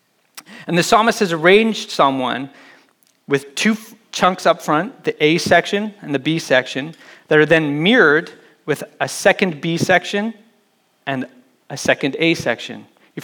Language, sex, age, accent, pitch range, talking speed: English, male, 30-49, American, 145-200 Hz, 155 wpm